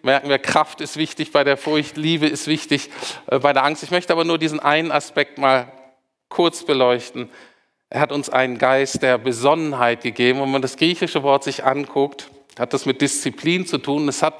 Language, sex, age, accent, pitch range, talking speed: German, male, 50-69, German, 130-160 Hz, 195 wpm